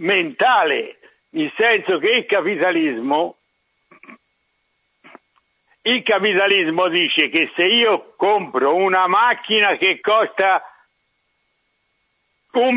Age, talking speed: 60-79, 85 wpm